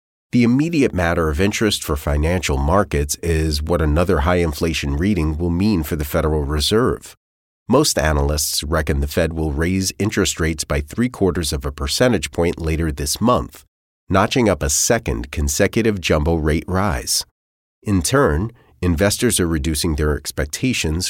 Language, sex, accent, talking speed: English, male, American, 150 wpm